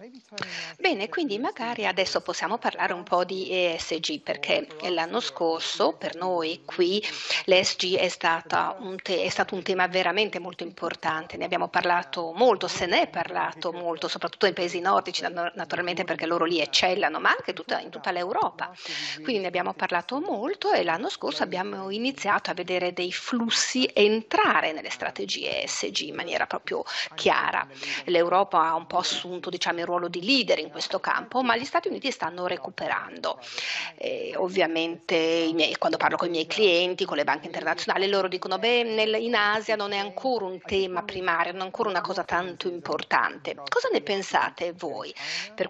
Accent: Italian